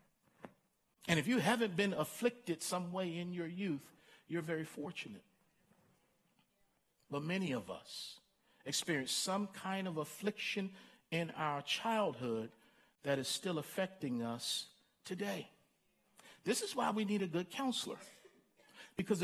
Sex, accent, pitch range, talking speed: male, American, 165-220 Hz, 130 wpm